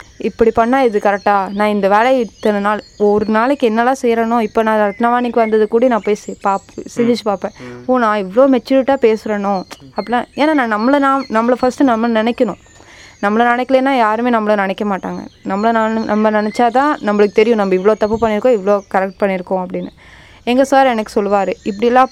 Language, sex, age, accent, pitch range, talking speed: Tamil, female, 20-39, native, 195-240 Hz, 170 wpm